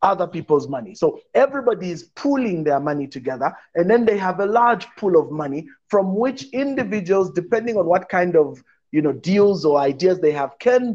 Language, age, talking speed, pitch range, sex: English, 30-49, 190 wpm, 155-215 Hz, male